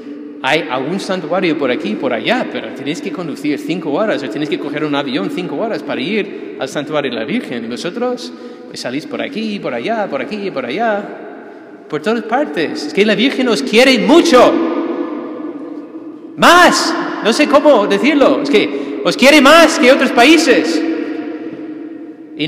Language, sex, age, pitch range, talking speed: Spanish, male, 30-49, 205-315 Hz, 175 wpm